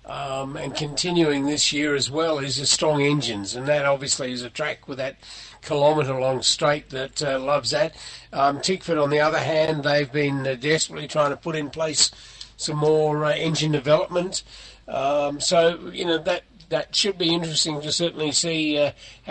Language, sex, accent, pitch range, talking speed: English, male, Australian, 130-155 Hz, 180 wpm